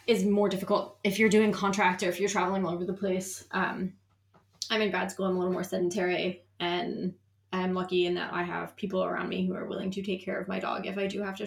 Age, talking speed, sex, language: 20-39, 255 wpm, female, English